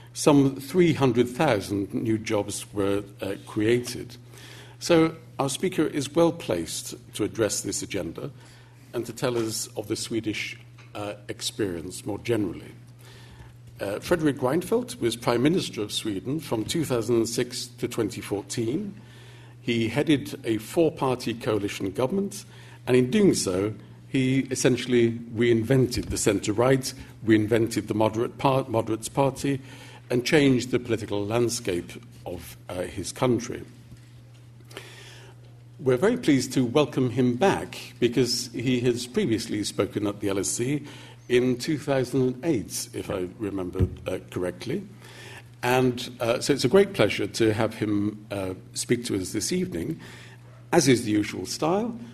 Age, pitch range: 50-69, 110-130 Hz